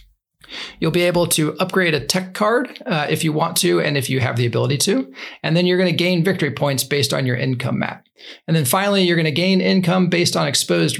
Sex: male